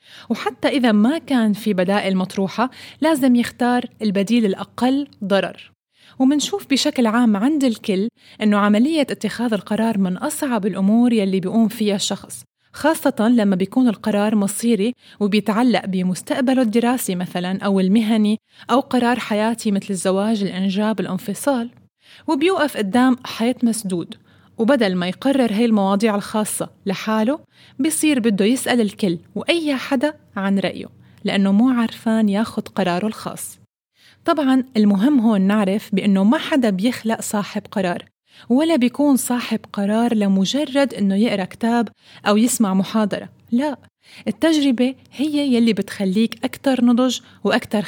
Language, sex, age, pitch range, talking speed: Arabic, female, 20-39, 200-255 Hz, 125 wpm